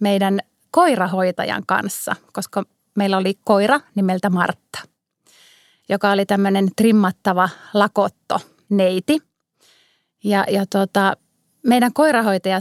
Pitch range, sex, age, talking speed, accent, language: 190-225 Hz, female, 30-49, 90 wpm, native, Finnish